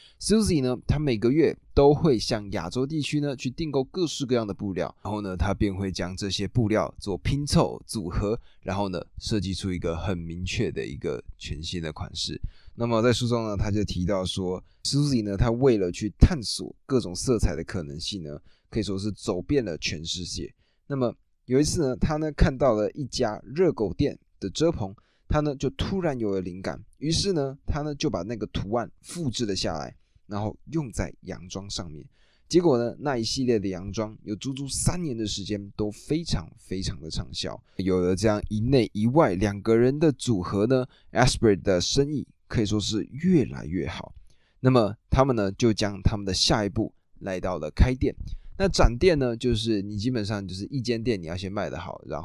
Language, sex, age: Chinese, male, 20-39